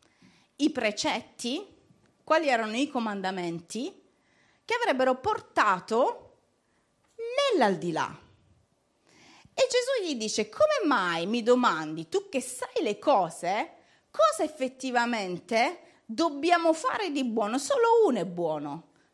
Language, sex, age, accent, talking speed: Italian, female, 40-59, native, 105 wpm